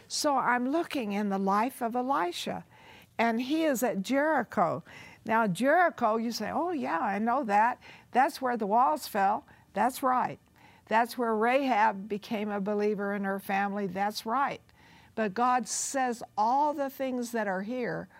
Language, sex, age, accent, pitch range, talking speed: English, female, 60-79, American, 200-255 Hz, 160 wpm